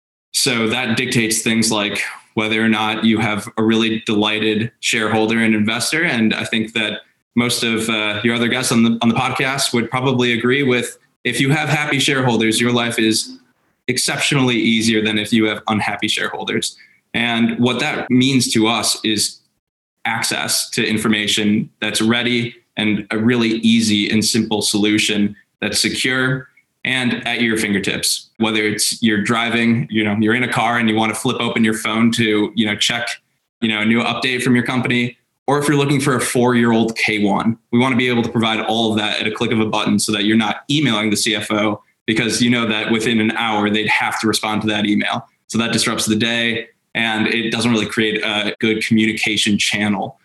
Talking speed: 195 wpm